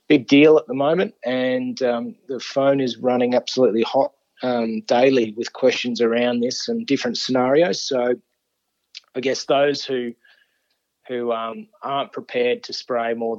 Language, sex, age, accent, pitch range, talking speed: English, male, 20-39, Australian, 115-130 Hz, 150 wpm